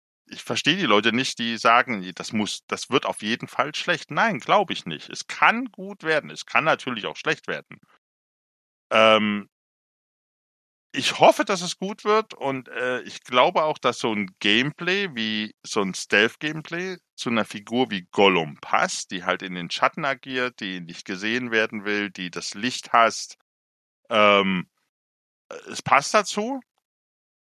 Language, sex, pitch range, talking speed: German, male, 105-140 Hz, 160 wpm